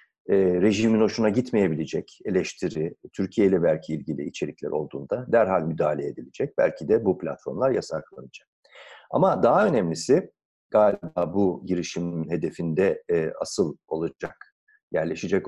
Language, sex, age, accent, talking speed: Turkish, male, 50-69, native, 110 wpm